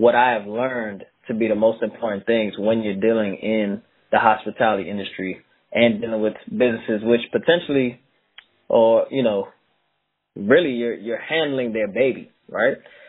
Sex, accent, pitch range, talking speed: male, American, 110-125 Hz, 150 wpm